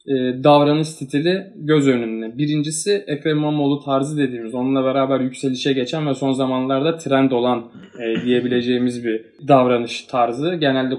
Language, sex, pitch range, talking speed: Turkish, male, 120-145 Hz, 125 wpm